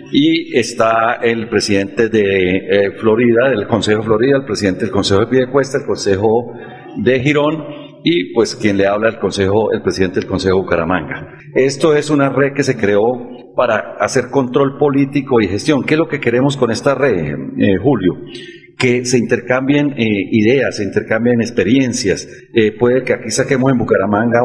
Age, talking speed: 40-59, 170 wpm